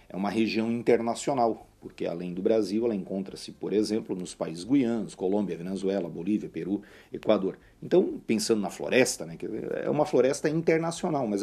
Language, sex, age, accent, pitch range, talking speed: Portuguese, male, 40-59, Brazilian, 95-130 Hz, 160 wpm